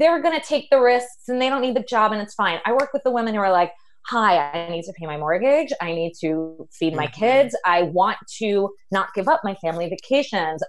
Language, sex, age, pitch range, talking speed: English, female, 20-39, 150-195 Hz, 255 wpm